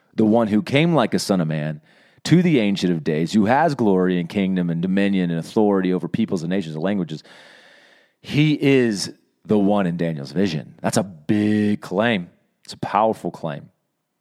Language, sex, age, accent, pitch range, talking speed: English, male, 30-49, American, 95-140 Hz, 185 wpm